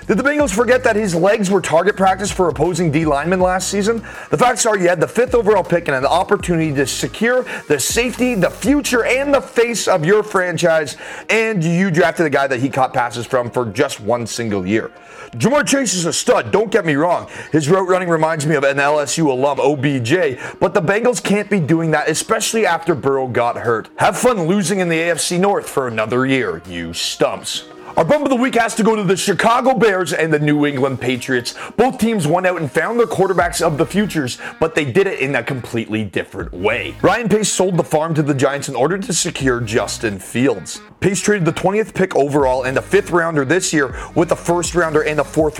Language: English